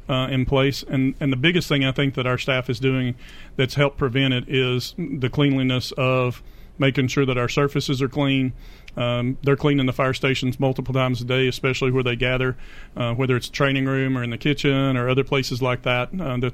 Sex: male